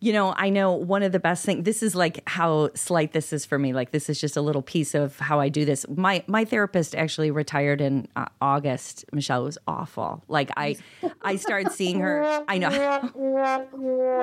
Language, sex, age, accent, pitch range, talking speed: English, female, 30-49, American, 145-195 Hz, 210 wpm